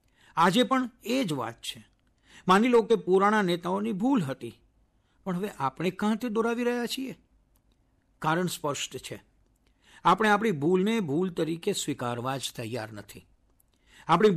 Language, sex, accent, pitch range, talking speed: Gujarati, male, native, 125-205 Hz, 120 wpm